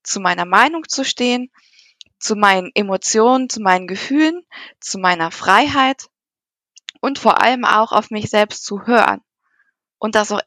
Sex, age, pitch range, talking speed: female, 20-39, 190-225 Hz, 150 wpm